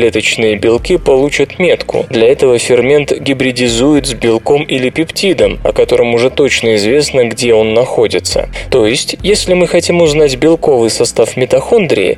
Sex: male